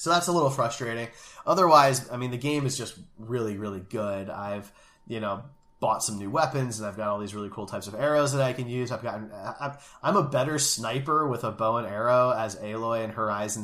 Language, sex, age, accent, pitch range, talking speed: English, male, 20-39, American, 105-125 Hz, 225 wpm